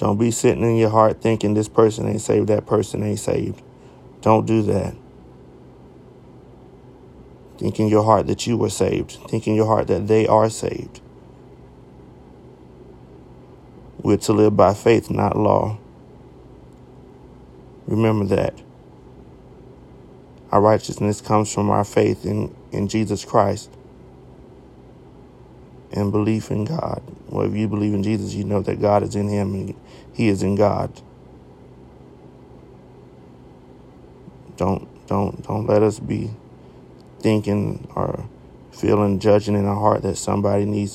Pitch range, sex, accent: 100-110 Hz, male, American